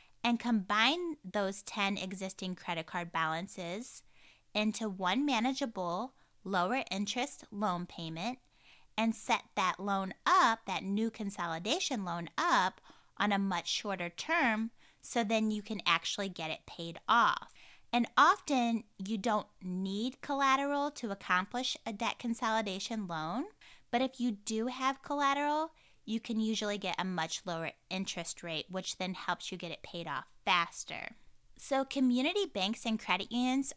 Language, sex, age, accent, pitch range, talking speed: English, female, 20-39, American, 185-245 Hz, 145 wpm